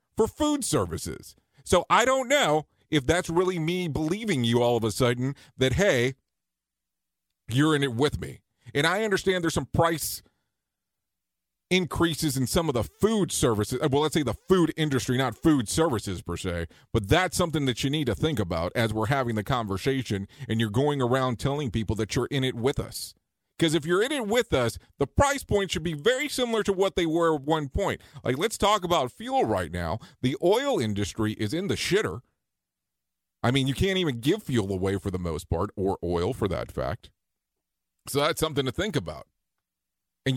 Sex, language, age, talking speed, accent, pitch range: male, English, 40-59, 200 wpm, American, 105-165 Hz